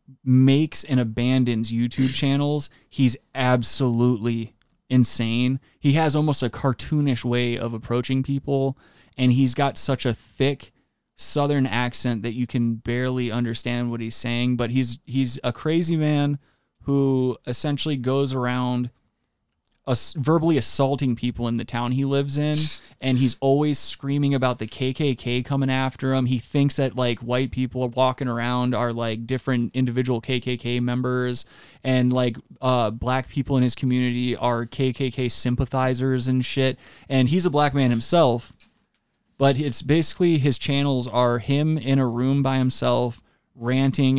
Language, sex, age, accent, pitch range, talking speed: English, male, 20-39, American, 120-135 Hz, 150 wpm